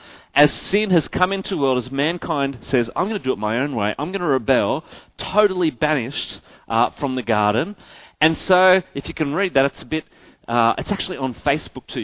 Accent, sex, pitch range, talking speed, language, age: Australian, male, 120-190 Hz, 220 wpm, English, 30-49